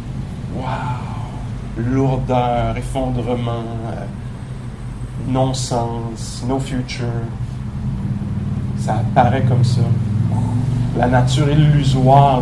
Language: English